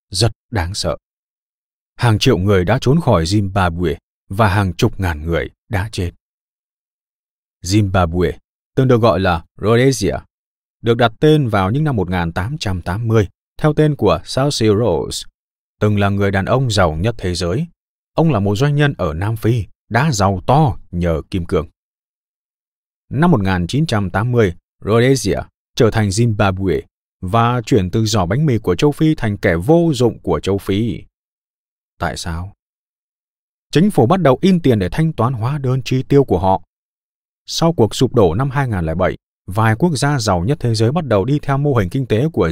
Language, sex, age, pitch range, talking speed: Vietnamese, male, 20-39, 95-130 Hz, 170 wpm